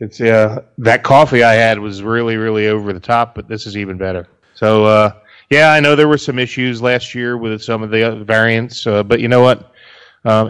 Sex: male